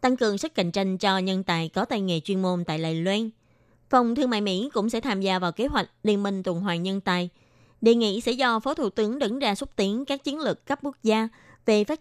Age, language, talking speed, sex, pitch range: 20-39, Vietnamese, 260 wpm, female, 195-255 Hz